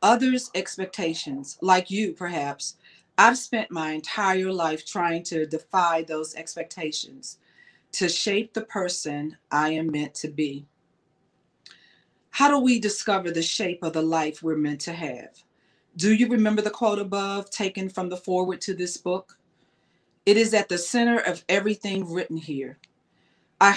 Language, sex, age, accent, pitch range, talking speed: English, female, 40-59, American, 160-205 Hz, 150 wpm